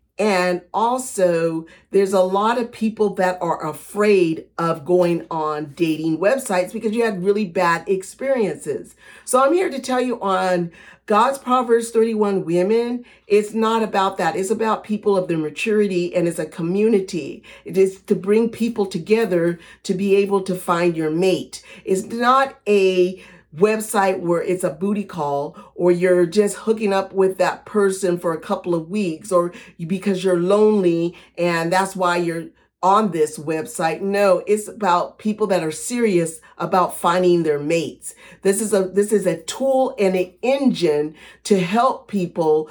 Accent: American